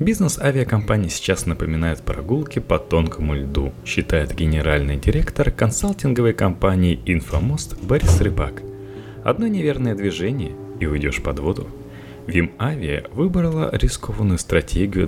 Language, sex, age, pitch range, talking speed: Russian, male, 30-49, 85-125 Hz, 110 wpm